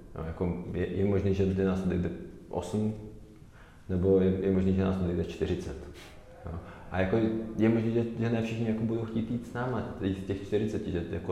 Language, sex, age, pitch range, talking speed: Czech, male, 20-39, 95-105 Hz, 210 wpm